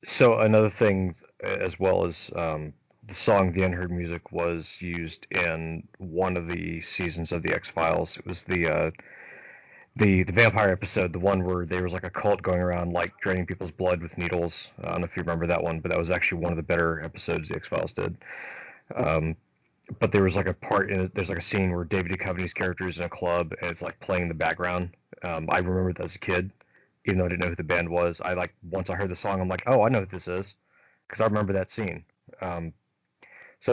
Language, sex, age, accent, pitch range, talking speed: English, male, 30-49, American, 90-105 Hz, 240 wpm